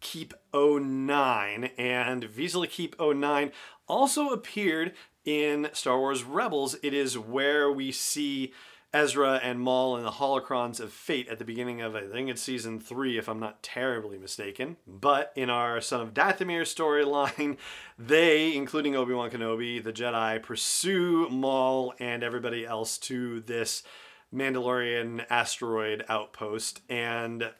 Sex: male